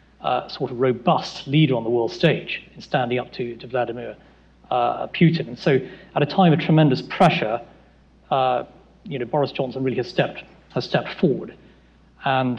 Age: 40-59